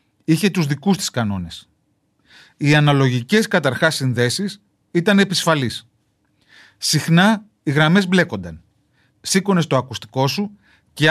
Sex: male